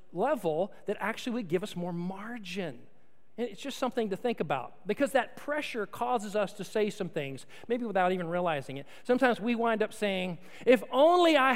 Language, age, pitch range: English, 40-59, 180-245 Hz